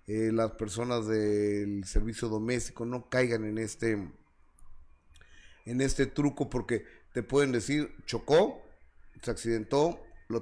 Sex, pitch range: male, 110-140 Hz